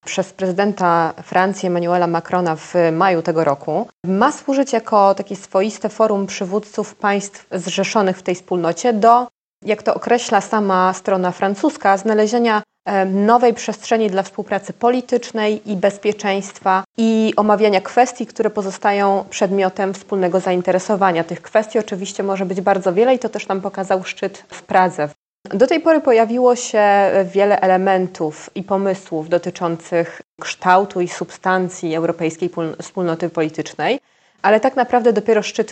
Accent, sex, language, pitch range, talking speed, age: native, female, Polish, 180-220 Hz, 135 wpm, 20-39